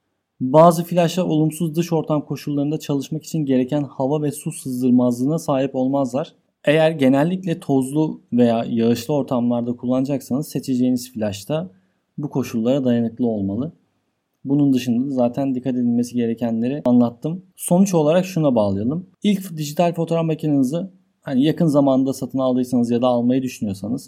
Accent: native